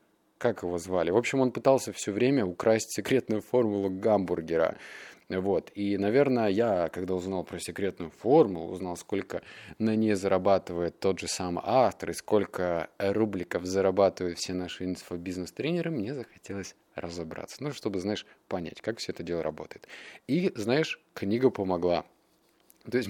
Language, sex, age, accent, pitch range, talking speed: Russian, male, 20-39, native, 95-130 Hz, 145 wpm